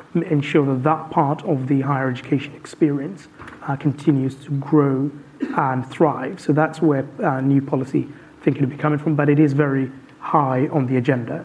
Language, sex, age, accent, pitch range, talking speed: English, male, 30-49, British, 135-155 Hz, 180 wpm